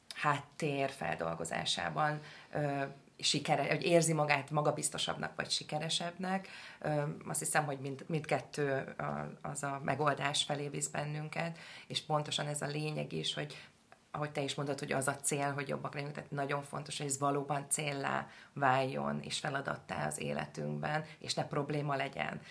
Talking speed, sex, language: 145 wpm, female, Hungarian